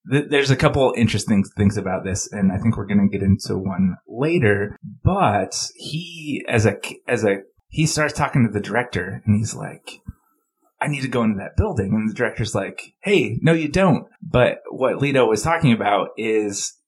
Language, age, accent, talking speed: English, 30-49, American, 190 wpm